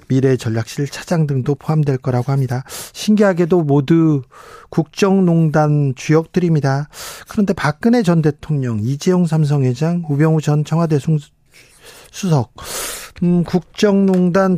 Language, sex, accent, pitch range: Korean, male, native, 130-180 Hz